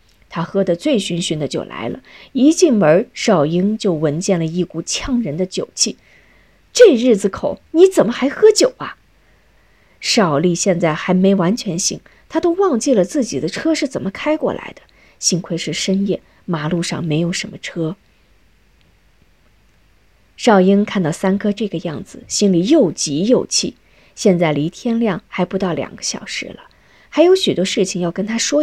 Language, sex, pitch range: Chinese, female, 175-250 Hz